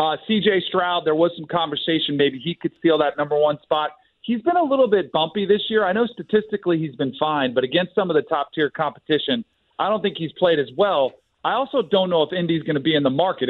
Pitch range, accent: 150-185 Hz, American